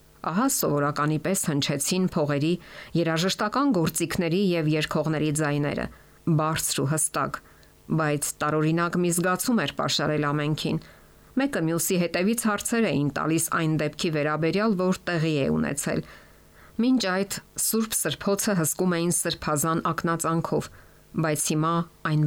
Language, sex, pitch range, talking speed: English, female, 150-185 Hz, 90 wpm